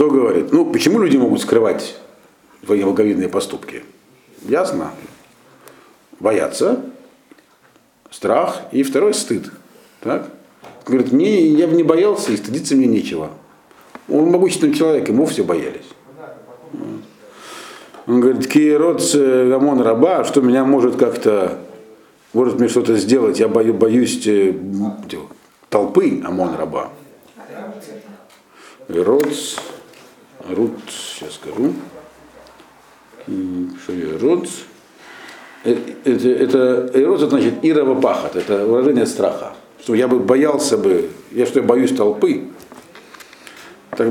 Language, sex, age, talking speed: Russian, male, 50-69, 105 wpm